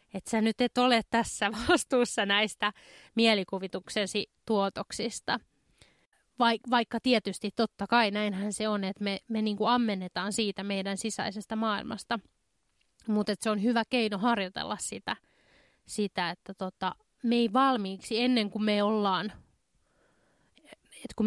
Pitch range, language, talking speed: 195-235 Hz, Finnish, 125 wpm